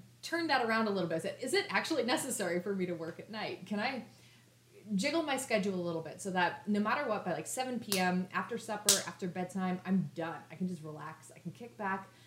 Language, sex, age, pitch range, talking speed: English, female, 20-39, 170-215 Hz, 230 wpm